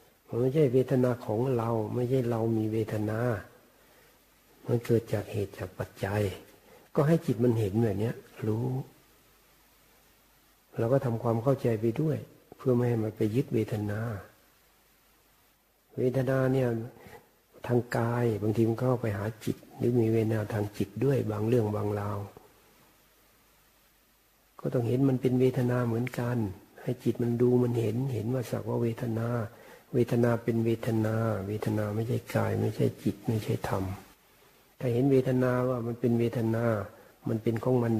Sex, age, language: male, 60-79, Thai